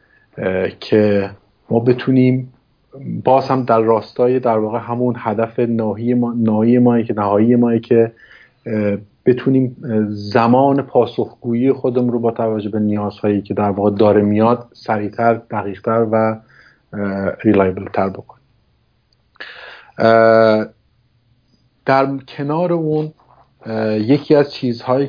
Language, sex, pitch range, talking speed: Persian, male, 110-125 Hz, 110 wpm